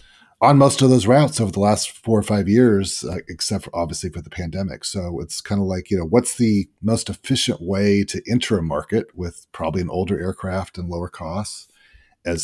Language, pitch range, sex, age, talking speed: English, 95-120 Hz, male, 40-59, 210 wpm